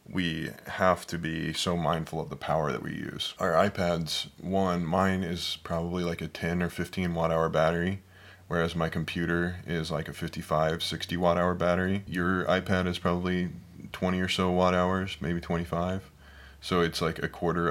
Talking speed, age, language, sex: 180 wpm, 20-39, English, male